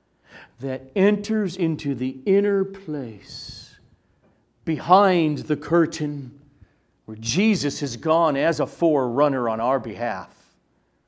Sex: male